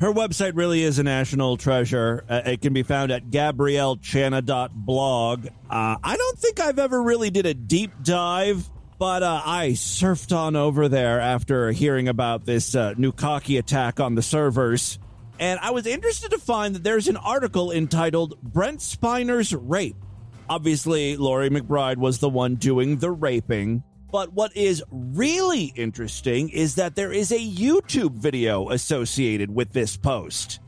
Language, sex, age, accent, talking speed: English, male, 30-49, American, 160 wpm